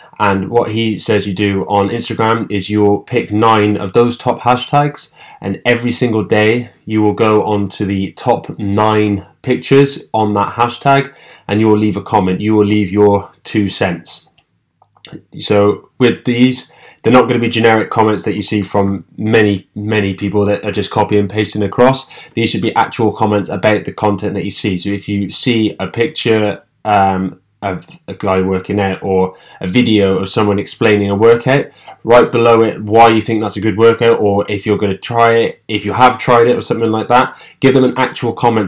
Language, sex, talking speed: English, male, 200 wpm